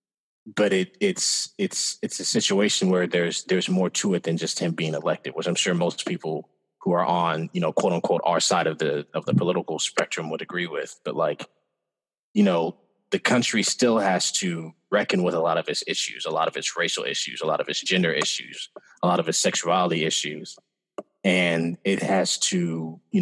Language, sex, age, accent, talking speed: English, male, 20-39, American, 205 wpm